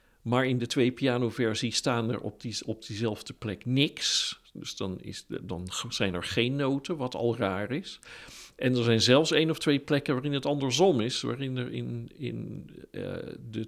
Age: 50-69